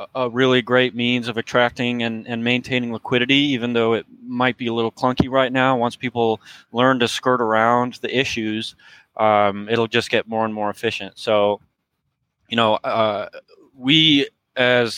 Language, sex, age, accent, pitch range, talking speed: English, male, 20-39, American, 105-125 Hz, 170 wpm